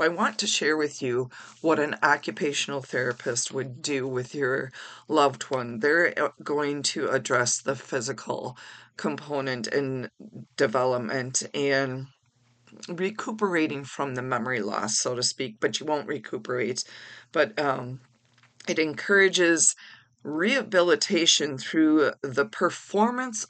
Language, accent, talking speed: English, American, 115 wpm